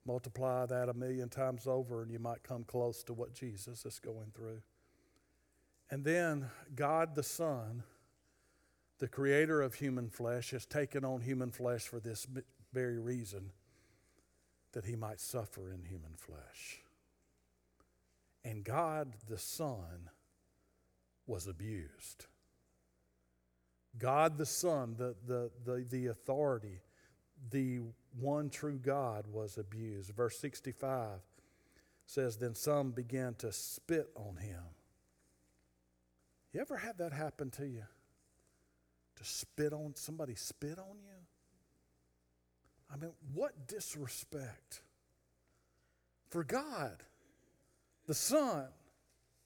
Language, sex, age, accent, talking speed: English, male, 50-69, American, 115 wpm